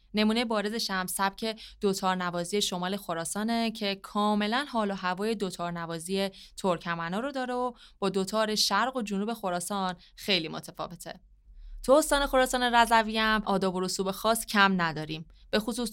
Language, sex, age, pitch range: Persian, female, 20-39, 185-240 Hz